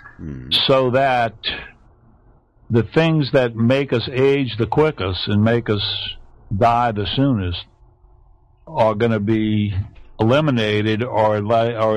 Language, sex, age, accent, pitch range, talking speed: English, male, 50-69, American, 105-125 Hz, 115 wpm